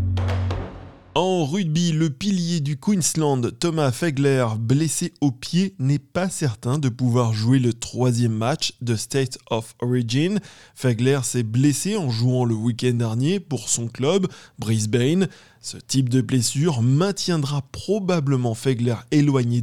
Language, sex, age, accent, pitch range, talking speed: French, male, 20-39, French, 120-155 Hz, 135 wpm